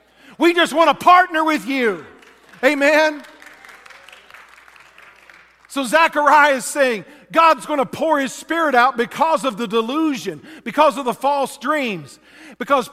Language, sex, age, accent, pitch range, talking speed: English, male, 50-69, American, 215-290 Hz, 135 wpm